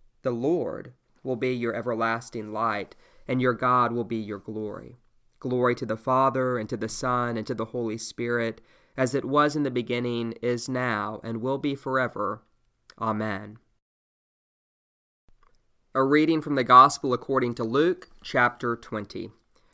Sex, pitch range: male, 115-140 Hz